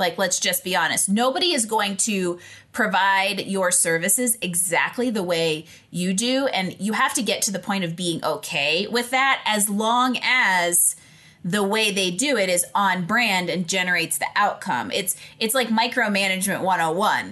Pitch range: 175-225 Hz